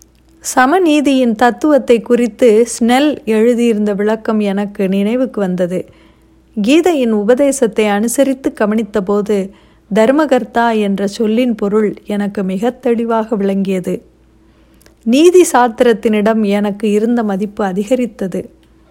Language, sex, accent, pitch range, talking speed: Tamil, female, native, 205-250 Hz, 85 wpm